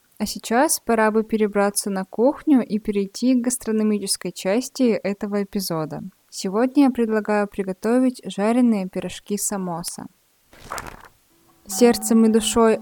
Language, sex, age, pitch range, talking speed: Russian, female, 20-39, 200-250 Hz, 110 wpm